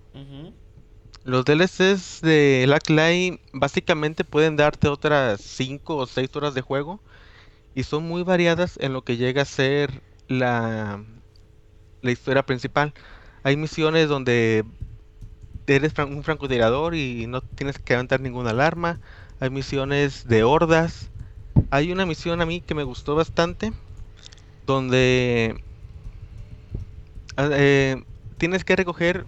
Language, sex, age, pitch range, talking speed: Spanish, male, 30-49, 115-155 Hz, 120 wpm